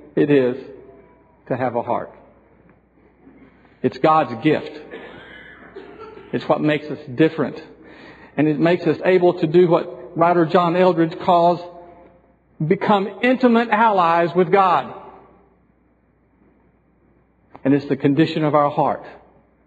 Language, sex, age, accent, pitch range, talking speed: English, male, 50-69, American, 135-185 Hz, 115 wpm